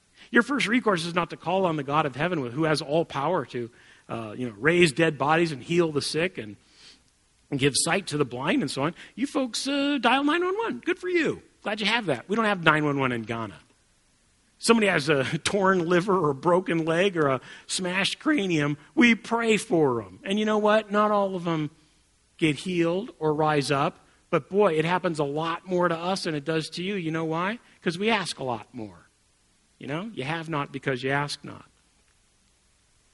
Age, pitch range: 40-59, 145-200 Hz